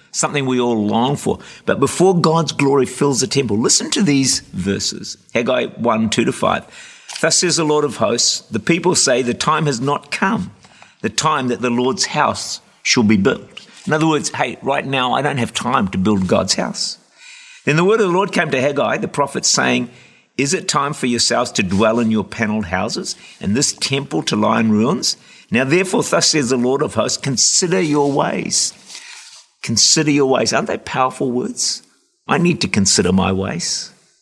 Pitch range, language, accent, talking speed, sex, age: 120-160 Hz, English, Australian, 195 wpm, male, 50-69